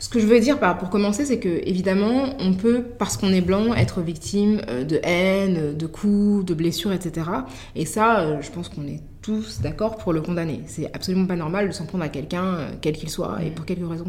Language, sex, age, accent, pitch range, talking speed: French, female, 20-39, French, 160-205 Hz, 220 wpm